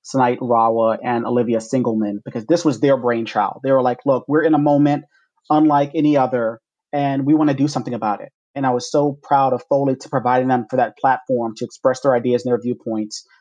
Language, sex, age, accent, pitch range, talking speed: English, male, 30-49, American, 120-145 Hz, 220 wpm